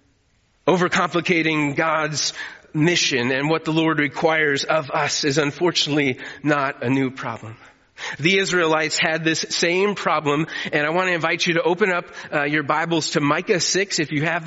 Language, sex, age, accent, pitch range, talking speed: English, male, 30-49, American, 155-195 Hz, 165 wpm